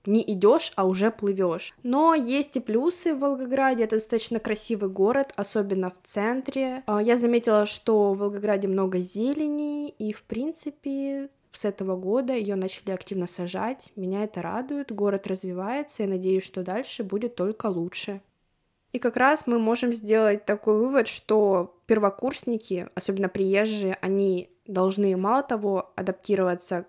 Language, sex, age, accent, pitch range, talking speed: Russian, female, 20-39, native, 195-235 Hz, 145 wpm